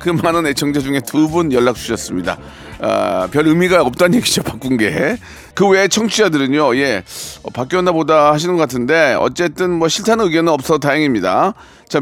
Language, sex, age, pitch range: Korean, male, 40-59, 145-190 Hz